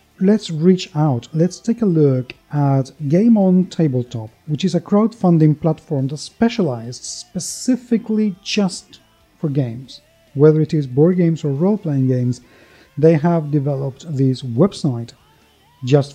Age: 40-59